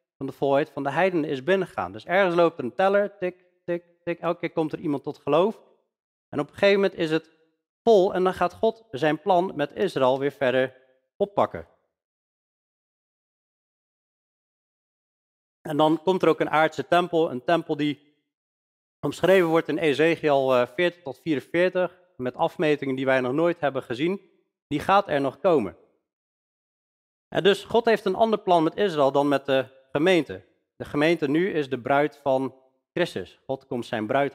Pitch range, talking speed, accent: 135-180 Hz, 170 wpm, Dutch